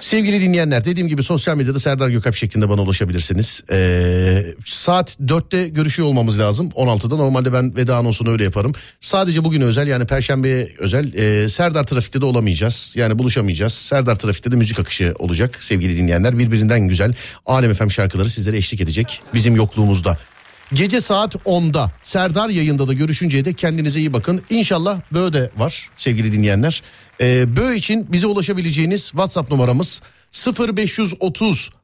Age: 40-59